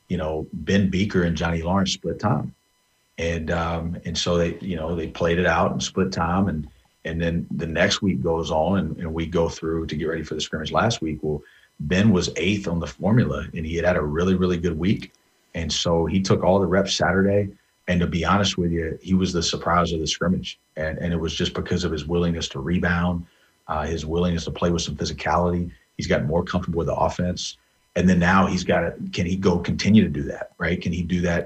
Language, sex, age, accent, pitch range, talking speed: English, male, 40-59, American, 80-95 Hz, 240 wpm